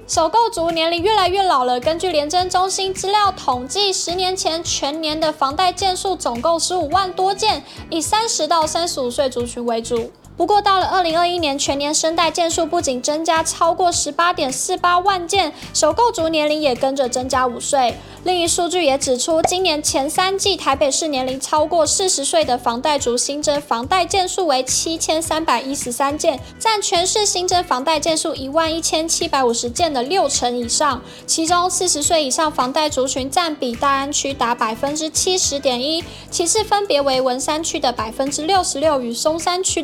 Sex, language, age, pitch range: female, Chinese, 10-29, 275-360 Hz